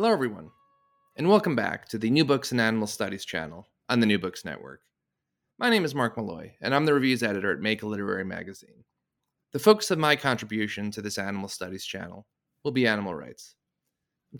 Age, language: 30-49, English